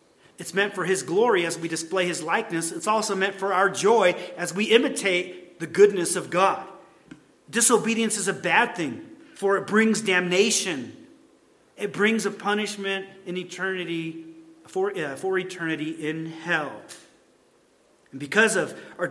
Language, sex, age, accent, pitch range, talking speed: English, male, 40-59, American, 160-210 Hz, 150 wpm